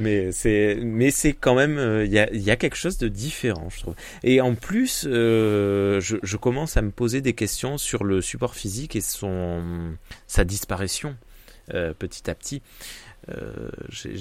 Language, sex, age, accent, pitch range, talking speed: French, male, 30-49, French, 90-115 Hz, 175 wpm